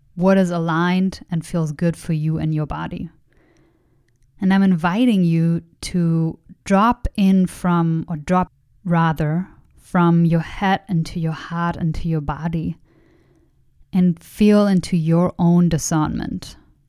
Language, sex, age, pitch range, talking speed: English, female, 30-49, 160-190 Hz, 130 wpm